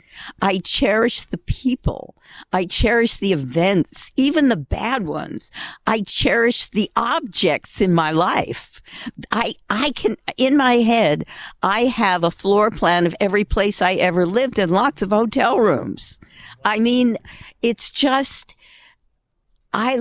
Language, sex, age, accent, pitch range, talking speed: English, female, 60-79, American, 185-245 Hz, 140 wpm